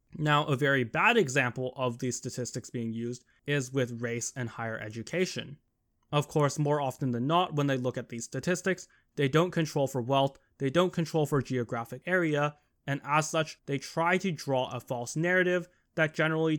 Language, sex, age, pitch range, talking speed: English, male, 20-39, 125-165 Hz, 185 wpm